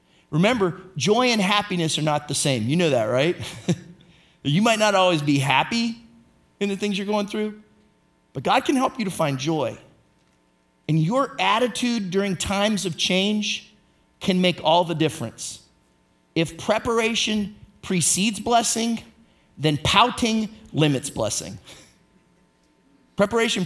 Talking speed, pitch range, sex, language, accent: 135 wpm, 130-205 Hz, male, English, American